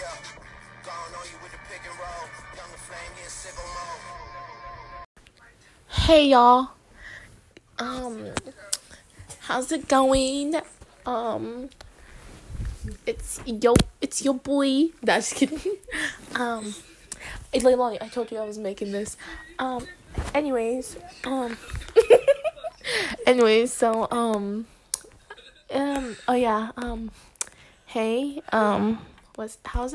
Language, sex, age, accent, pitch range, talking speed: English, female, 10-29, American, 230-270 Hz, 75 wpm